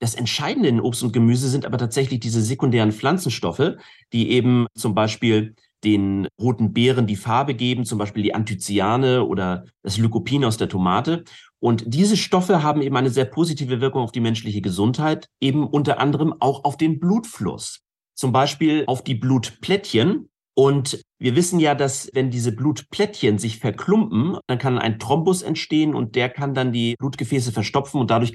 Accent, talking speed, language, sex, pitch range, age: German, 170 wpm, German, male, 115-150 Hz, 40-59